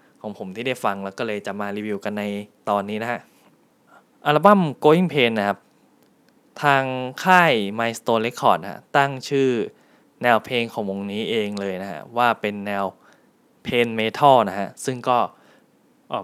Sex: male